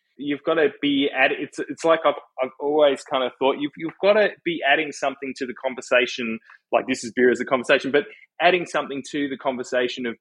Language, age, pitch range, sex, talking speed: English, 20-39, 120-140 Hz, male, 225 wpm